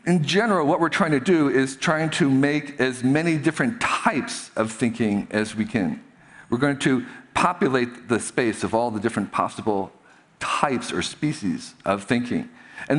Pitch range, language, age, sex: 105-150 Hz, Chinese, 50-69, male